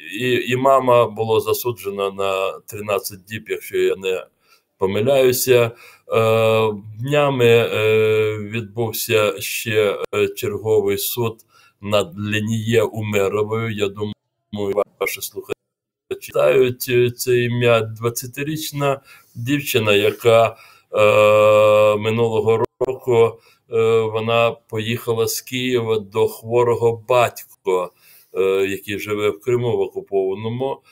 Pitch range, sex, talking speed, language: 100-135 Hz, male, 85 wpm, Ukrainian